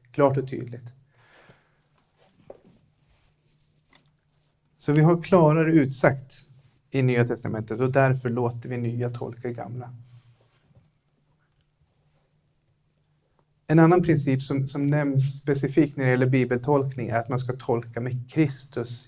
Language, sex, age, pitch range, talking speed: Swedish, male, 30-49, 125-150 Hz, 115 wpm